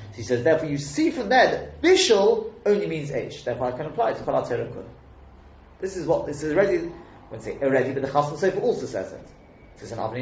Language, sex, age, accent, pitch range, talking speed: English, male, 30-49, British, 125-210 Hz, 225 wpm